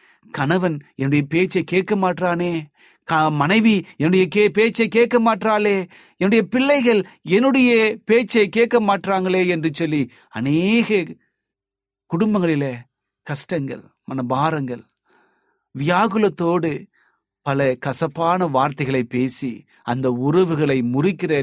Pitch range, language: 130-200 Hz, Tamil